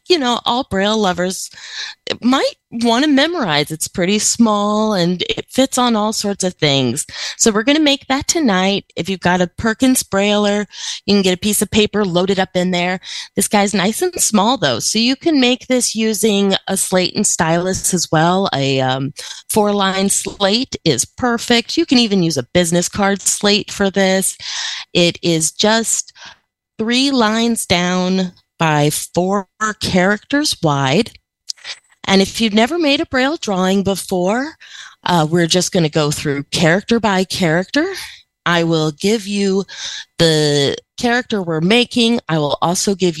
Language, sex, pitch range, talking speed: English, female, 170-220 Hz, 165 wpm